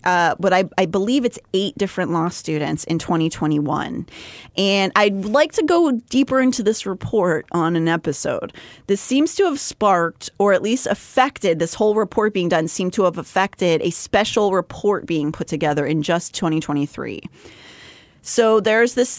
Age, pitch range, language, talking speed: 30-49, 160-210 Hz, English, 170 wpm